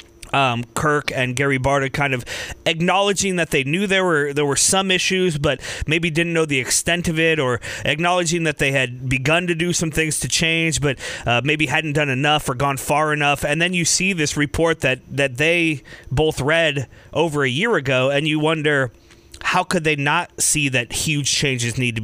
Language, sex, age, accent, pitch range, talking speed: English, male, 30-49, American, 130-155 Hz, 205 wpm